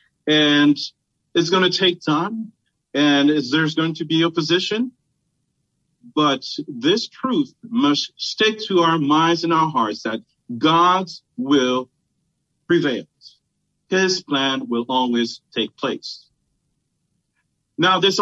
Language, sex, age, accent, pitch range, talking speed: English, male, 40-59, American, 140-175 Hz, 115 wpm